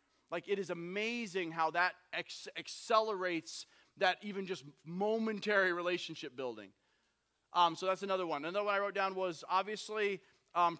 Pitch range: 180-215 Hz